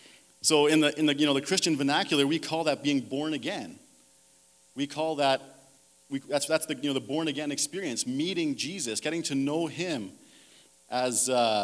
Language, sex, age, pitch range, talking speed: English, male, 40-59, 110-155 Hz, 185 wpm